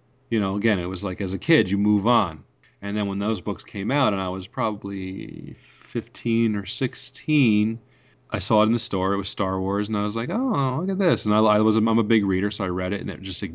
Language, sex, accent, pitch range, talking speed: English, male, American, 95-115 Hz, 250 wpm